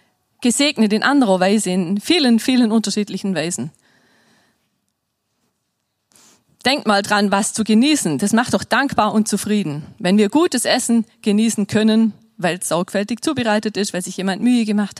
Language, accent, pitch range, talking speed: German, German, 195-240 Hz, 150 wpm